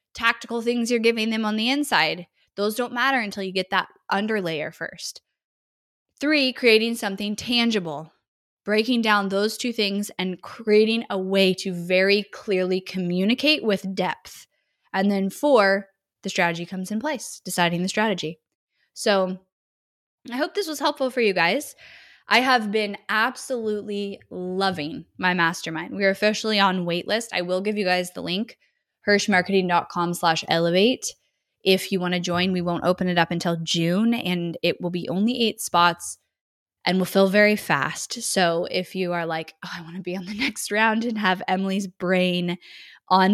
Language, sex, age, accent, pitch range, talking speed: English, female, 10-29, American, 180-220 Hz, 170 wpm